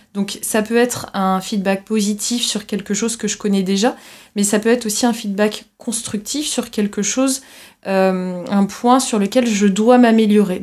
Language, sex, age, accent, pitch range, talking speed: French, female, 20-39, French, 200-240 Hz, 185 wpm